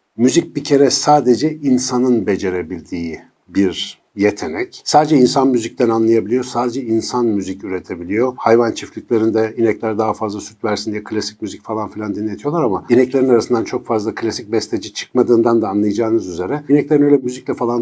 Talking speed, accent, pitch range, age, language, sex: 150 wpm, native, 105-130 Hz, 60-79, Turkish, male